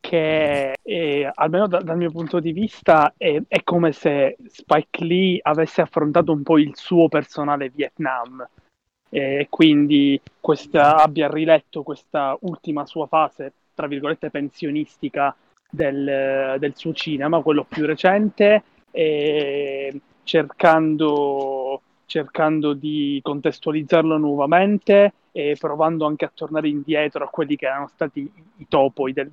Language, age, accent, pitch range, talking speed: Italian, 20-39, native, 140-160 Hz, 120 wpm